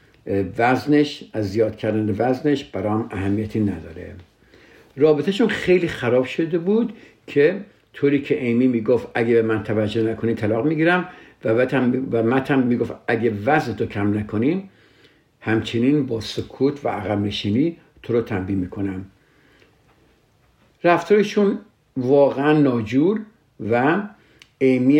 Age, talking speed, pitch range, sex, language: 60-79, 115 wpm, 105-140 Hz, male, Persian